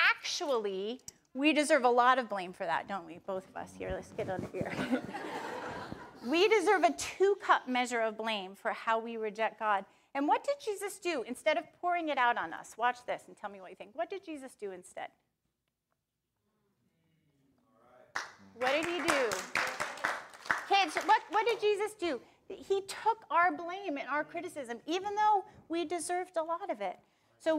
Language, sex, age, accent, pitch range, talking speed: English, female, 30-49, American, 210-305 Hz, 185 wpm